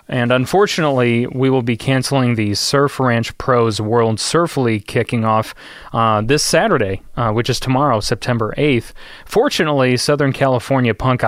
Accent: American